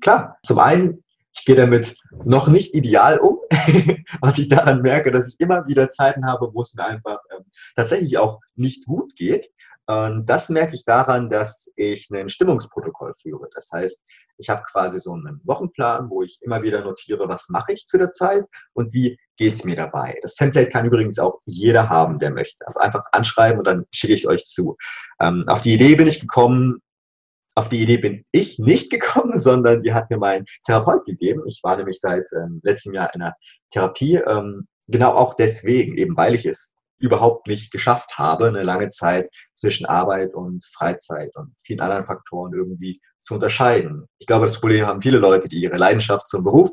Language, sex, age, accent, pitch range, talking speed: German, male, 30-49, German, 105-135 Hz, 195 wpm